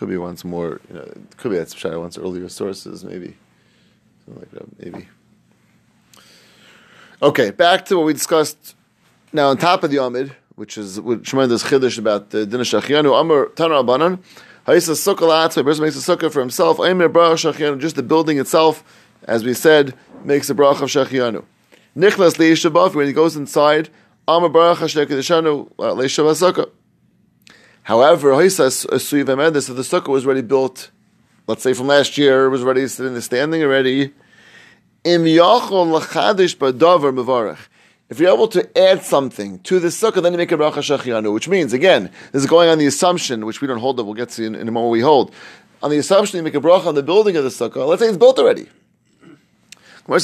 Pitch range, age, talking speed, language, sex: 130-170 Hz, 30-49, 185 wpm, English, male